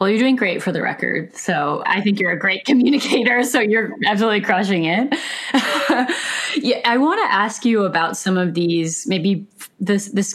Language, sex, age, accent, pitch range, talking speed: English, female, 10-29, American, 160-200 Hz, 185 wpm